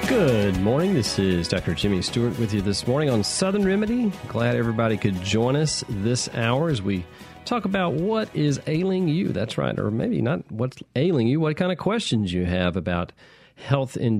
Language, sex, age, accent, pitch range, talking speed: English, male, 40-59, American, 100-145 Hz, 195 wpm